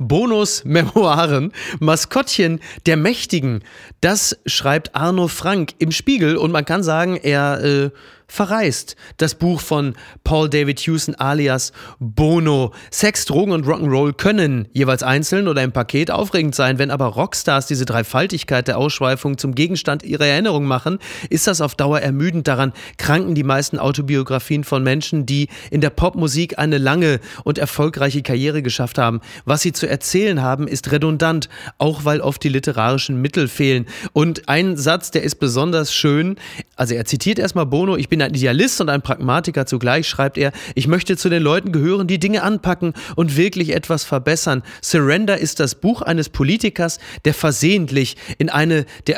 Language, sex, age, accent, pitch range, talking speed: German, male, 30-49, German, 135-165 Hz, 160 wpm